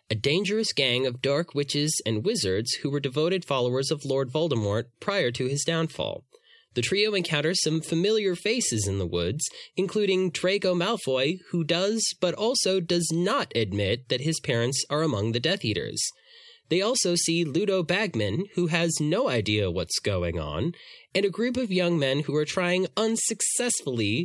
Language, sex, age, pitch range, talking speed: English, male, 20-39, 130-195 Hz, 170 wpm